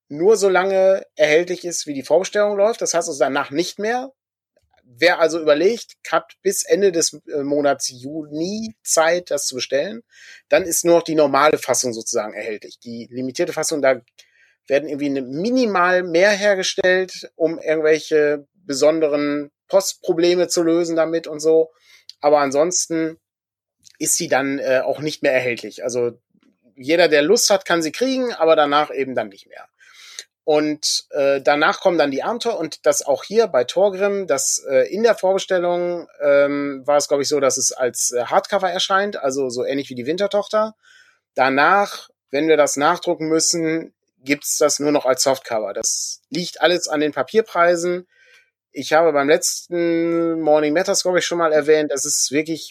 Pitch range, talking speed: 145-185 Hz, 170 wpm